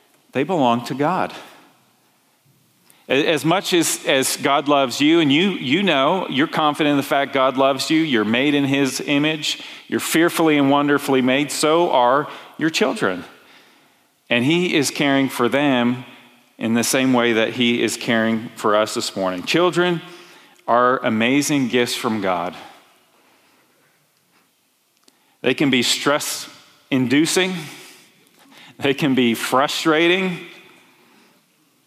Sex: male